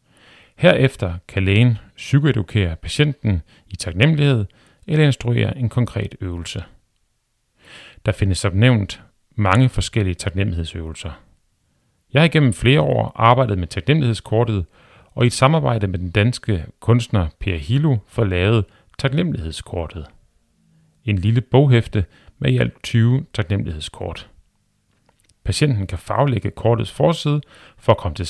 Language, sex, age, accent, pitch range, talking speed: Danish, male, 40-59, native, 95-125 Hz, 110 wpm